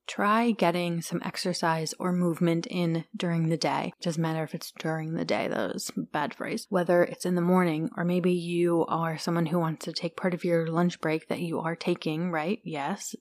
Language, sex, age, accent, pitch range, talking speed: English, female, 30-49, American, 165-185 Hz, 210 wpm